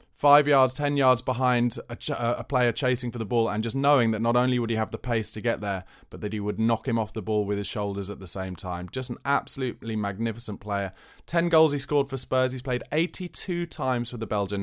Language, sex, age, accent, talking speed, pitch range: English, male, 20-39, British, 245 wpm, 105-130 Hz